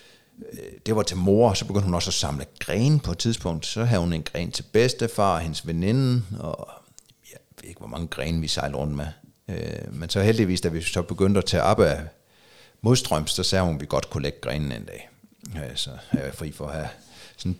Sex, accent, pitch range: male, native, 85-110 Hz